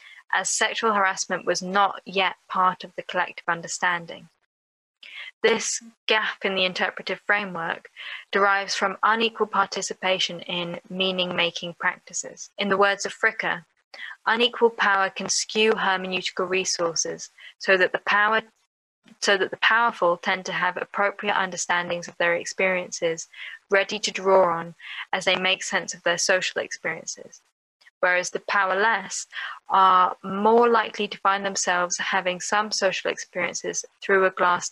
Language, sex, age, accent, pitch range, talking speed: English, female, 20-39, British, 180-210 Hz, 135 wpm